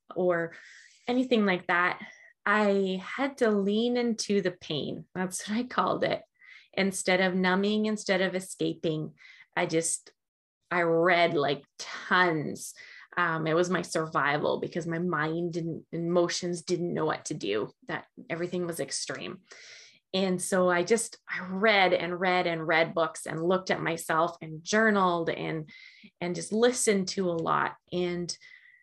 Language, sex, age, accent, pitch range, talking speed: English, female, 20-39, American, 175-225 Hz, 150 wpm